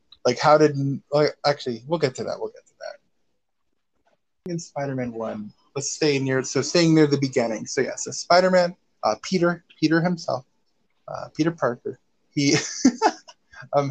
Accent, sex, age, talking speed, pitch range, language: American, male, 20-39, 165 wpm, 125-155 Hz, English